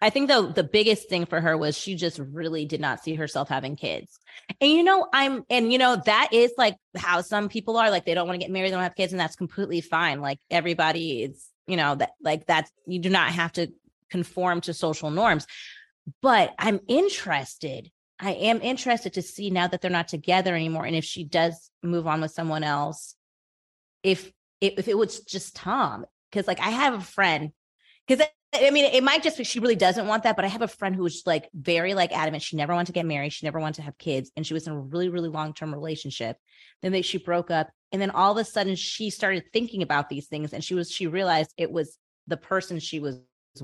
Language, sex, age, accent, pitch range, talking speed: English, female, 30-49, American, 155-210 Hz, 240 wpm